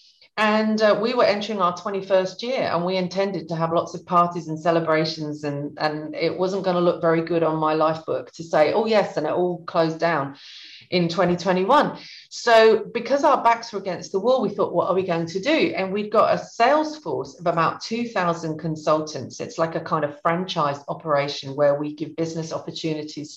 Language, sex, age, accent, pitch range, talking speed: English, female, 40-59, British, 160-205 Hz, 205 wpm